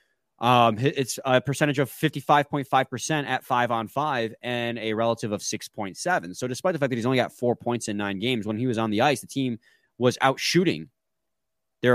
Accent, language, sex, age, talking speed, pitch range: American, English, male, 20-39, 200 wpm, 110-140 Hz